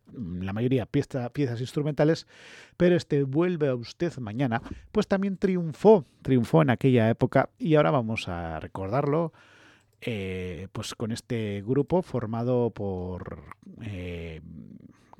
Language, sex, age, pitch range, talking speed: English, male, 40-59, 105-140 Hz, 120 wpm